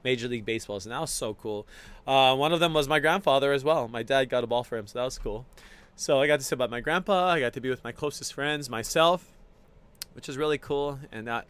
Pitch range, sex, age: 120-150 Hz, male, 20-39